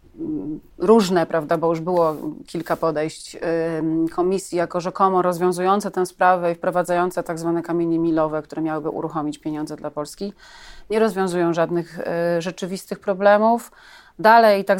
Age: 30-49